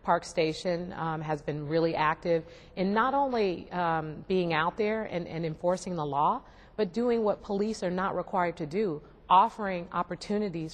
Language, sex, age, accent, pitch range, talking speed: English, female, 40-59, American, 160-190 Hz, 160 wpm